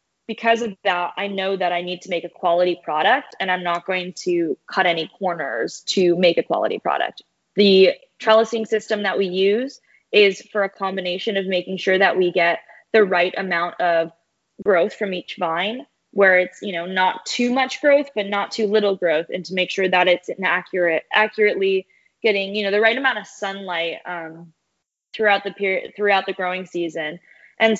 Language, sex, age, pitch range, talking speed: English, female, 20-39, 180-205 Hz, 190 wpm